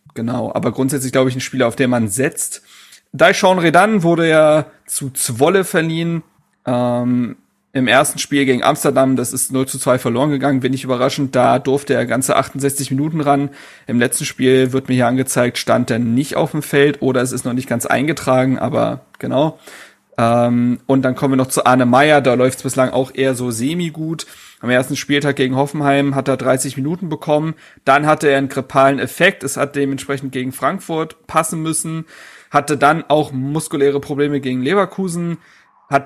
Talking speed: 185 wpm